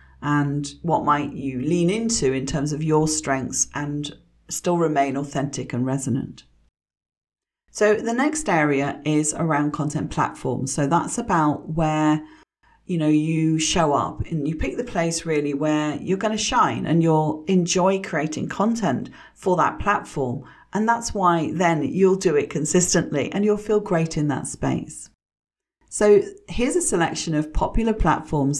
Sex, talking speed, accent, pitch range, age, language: female, 155 wpm, British, 145-190 Hz, 40-59, English